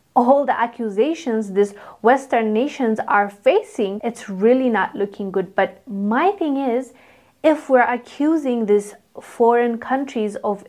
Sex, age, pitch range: female, 30-49, 210-275 Hz